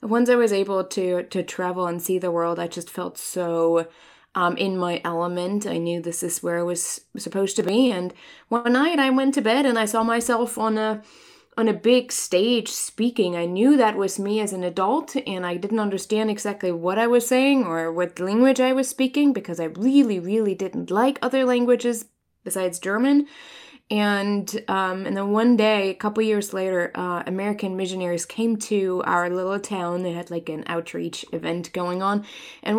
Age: 20-39